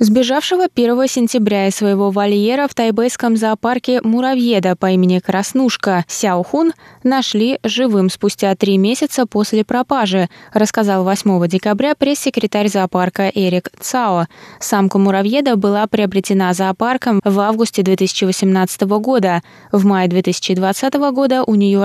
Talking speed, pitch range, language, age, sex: 120 wpm, 185-235 Hz, Russian, 20-39, female